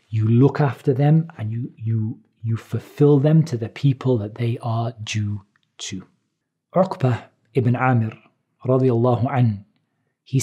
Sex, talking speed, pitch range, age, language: male, 140 wpm, 120-150 Hz, 40-59, English